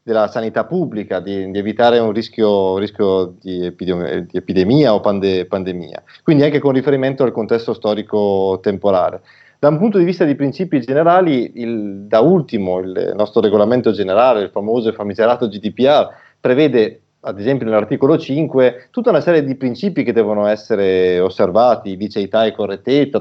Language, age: Italian, 30-49